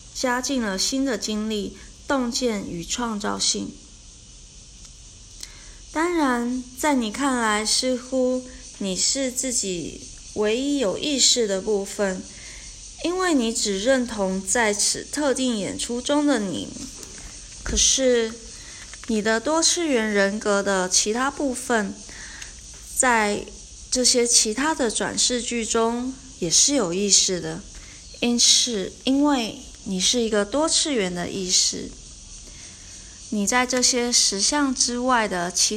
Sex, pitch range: female, 200-255 Hz